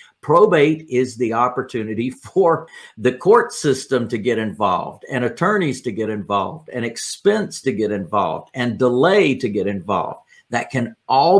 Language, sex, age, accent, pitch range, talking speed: English, male, 50-69, American, 115-140 Hz, 155 wpm